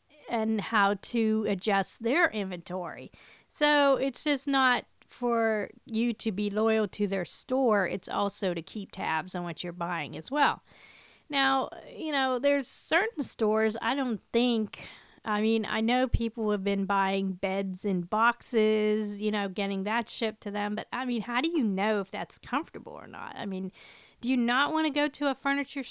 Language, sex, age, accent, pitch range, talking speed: English, female, 40-59, American, 200-255 Hz, 180 wpm